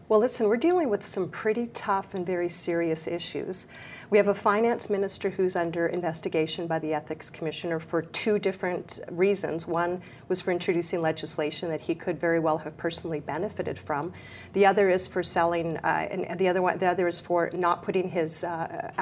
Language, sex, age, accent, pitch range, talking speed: English, female, 40-59, American, 170-215 Hz, 190 wpm